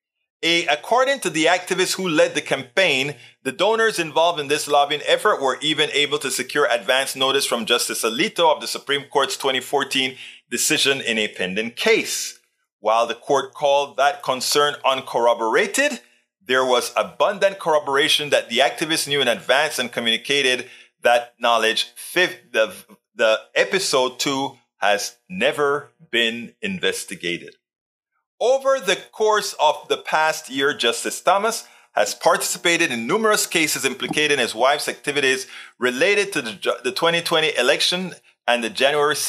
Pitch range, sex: 125-180 Hz, male